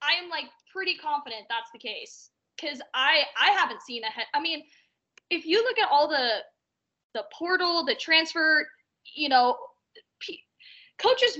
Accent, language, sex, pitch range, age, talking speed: American, English, female, 225-305 Hz, 20-39, 155 wpm